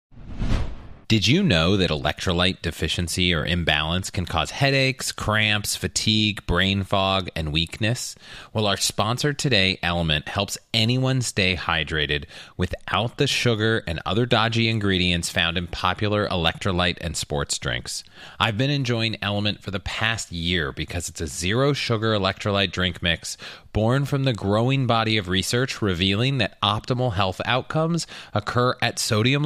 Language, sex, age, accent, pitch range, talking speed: English, male, 30-49, American, 95-130 Hz, 145 wpm